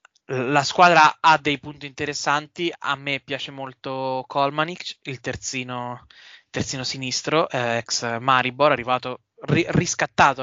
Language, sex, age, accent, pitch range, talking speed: Italian, male, 20-39, native, 135-160 Hz, 120 wpm